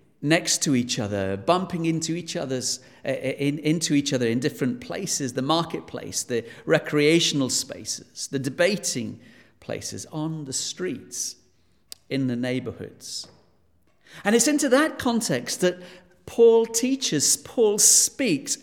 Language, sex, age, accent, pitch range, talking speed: English, male, 50-69, British, 120-185 Hz, 130 wpm